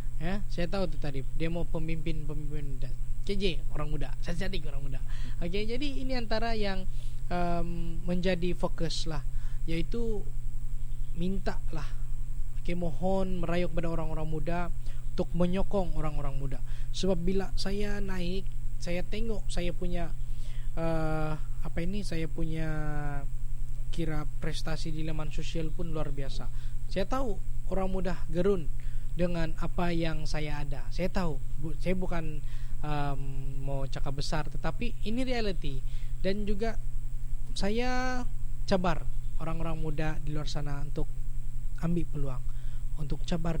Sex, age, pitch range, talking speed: male, 20-39, 125-175 Hz, 130 wpm